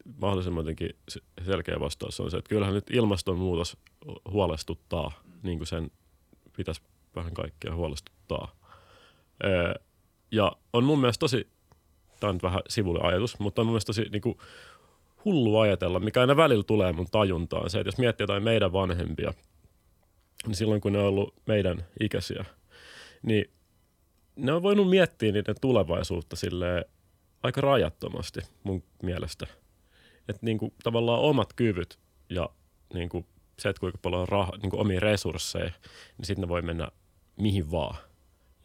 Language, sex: Finnish, male